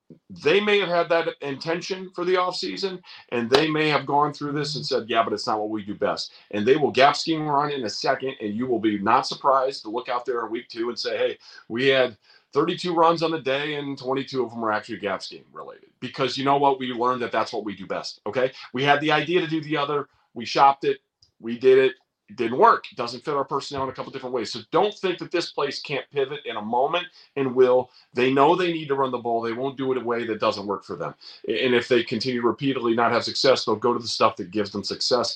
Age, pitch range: 40-59, 115-160 Hz